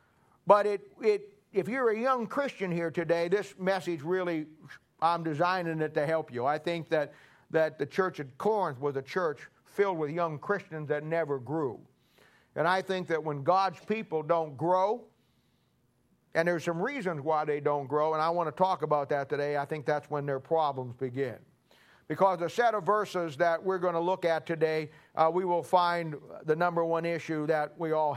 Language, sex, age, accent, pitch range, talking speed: English, male, 50-69, American, 160-205 Hz, 195 wpm